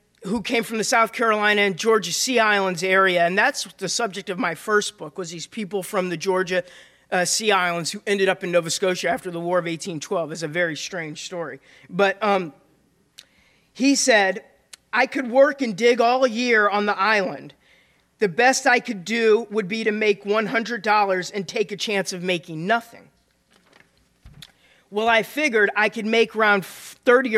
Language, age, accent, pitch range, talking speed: English, 40-59, American, 185-240 Hz, 180 wpm